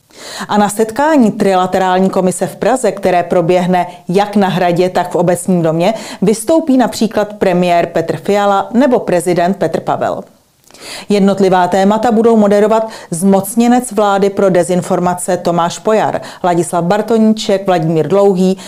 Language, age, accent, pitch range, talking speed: Czech, 40-59, native, 180-215 Hz, 125 wpm